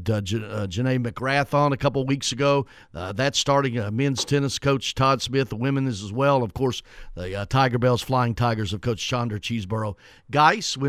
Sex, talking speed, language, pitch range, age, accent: male, 210 wpm, English, 115-150 Hz, 40-59, American